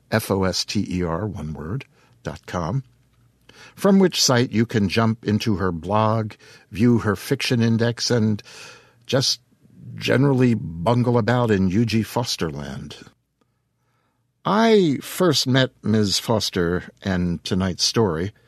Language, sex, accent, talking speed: English, male, American, 125 wpm